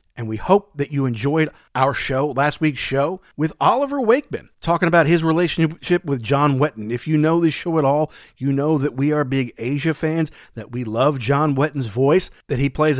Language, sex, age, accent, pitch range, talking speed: English, male, 40-59, American, 125-170 Hz, 210 wpm